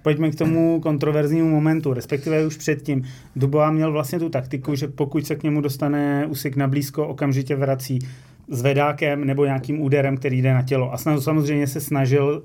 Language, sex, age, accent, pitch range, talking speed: Czech, male, 30-49, native, 130-145 Hz, 180 wpm